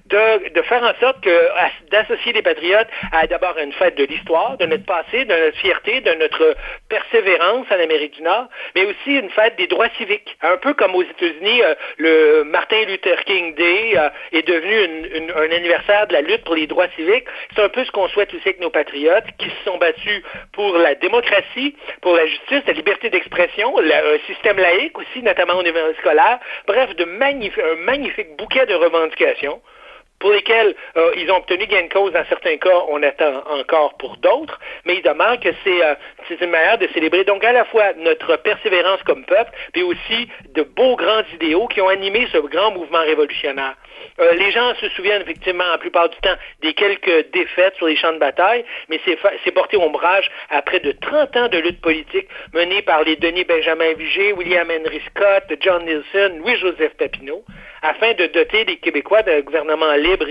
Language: French